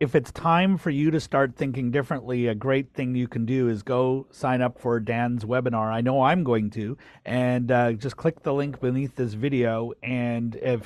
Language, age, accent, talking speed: English, 40-59, American, 210 wpm